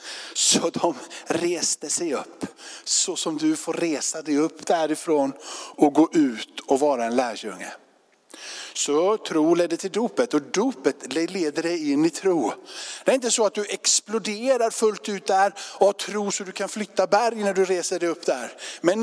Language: Swedish